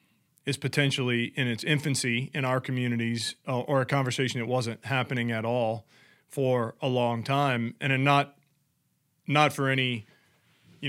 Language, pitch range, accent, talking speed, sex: English, 120-140 Hz, American, 150 wpm, male